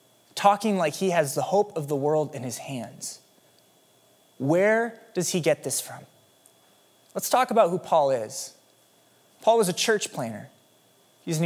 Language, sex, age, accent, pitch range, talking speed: English, male, 20-39, American, 150-190 Hz, 160 wpm